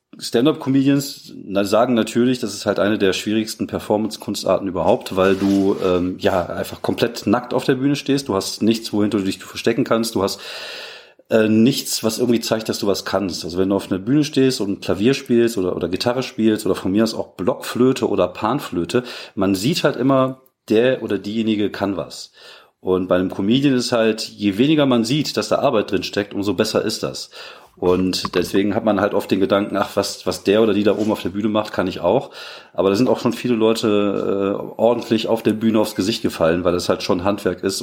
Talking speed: 215 wpm